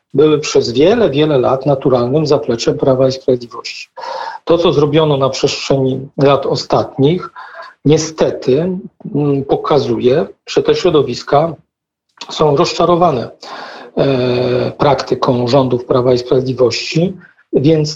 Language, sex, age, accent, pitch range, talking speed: Polish, male, 40-59, native, 135-165 Hz, 100 wpm